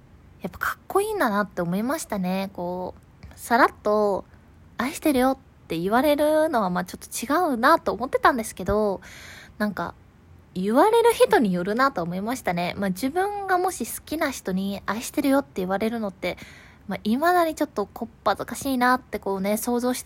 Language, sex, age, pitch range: Japanese, female, 20-39, 190-270 Hz